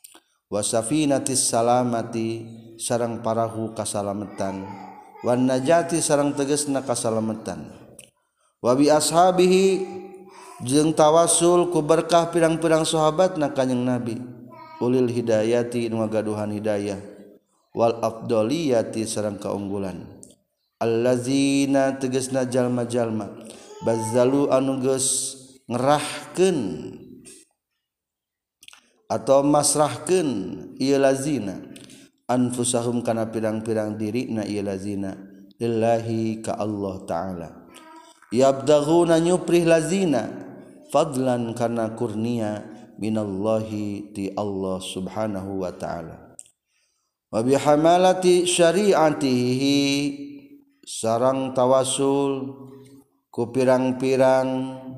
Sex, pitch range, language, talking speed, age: male, 110-145 Hz, Indonesian, 70 wpm, 40-59